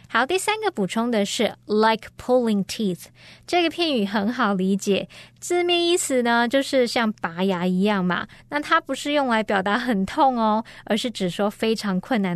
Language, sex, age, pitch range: Chinese, female, 20-39, 190-245 Hz